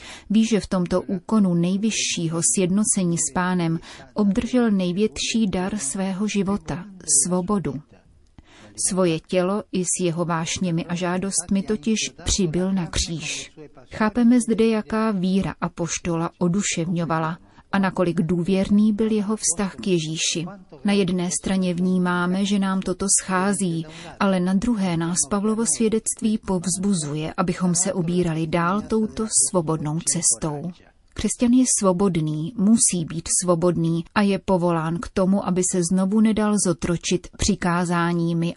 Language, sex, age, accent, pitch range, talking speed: Czech, female, 30-49, native, 170-205 Hz, 125 wpm